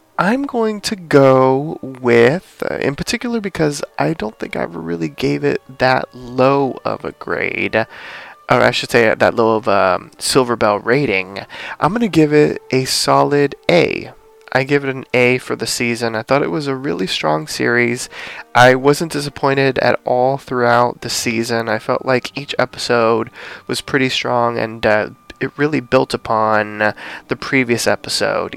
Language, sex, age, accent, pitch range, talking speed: English, male, 20-39, American, 110-140 Hz, 170 wpm